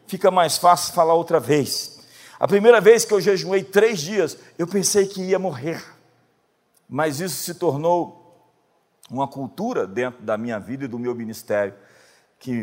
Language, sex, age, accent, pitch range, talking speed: Portuguese, male, 50-69, Brazilian, 115-170 Hz, 160 wpm